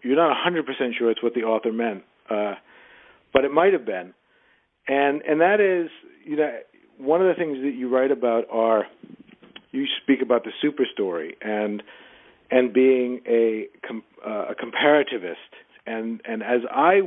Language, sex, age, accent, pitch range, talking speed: English, male, 50-69, American, 120-150 Hz, 160 wpm